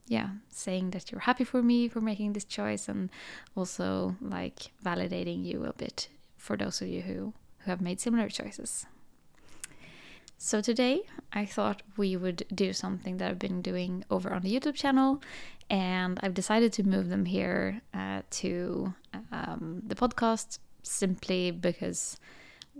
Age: 20-39